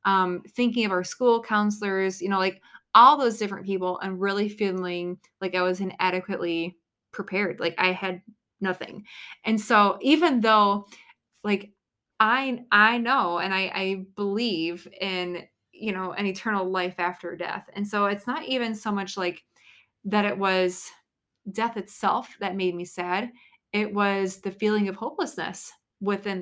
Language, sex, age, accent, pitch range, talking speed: English, female, 20-39, American, 185-215 Hz, 155 wpm